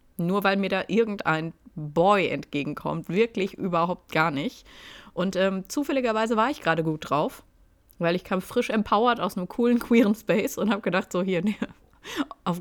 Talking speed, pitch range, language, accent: 170 wpm, 165-230 Hz, German, German